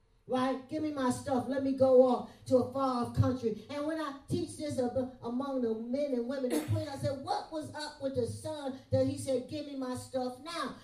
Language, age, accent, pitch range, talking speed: English, 40-59, American, 240-295 Hz, 235 wpm